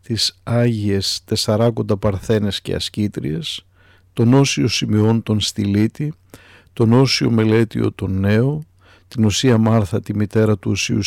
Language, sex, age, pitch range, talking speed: Greek, male, 50-69, 95-120 Hz, 125 wpm